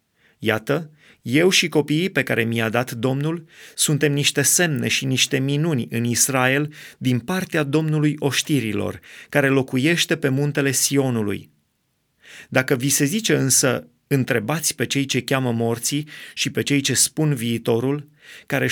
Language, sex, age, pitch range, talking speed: Romanian, male, 30-49, 120-150 Hz, 140 wpm